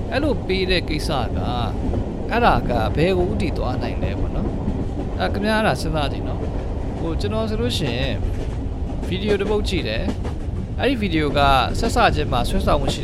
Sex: male